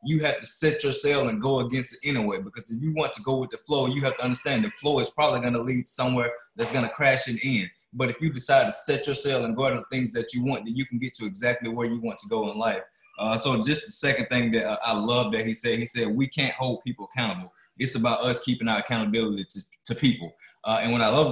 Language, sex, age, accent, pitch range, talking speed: English, male, 20-39, American, 115-140 Hz, 275 wpm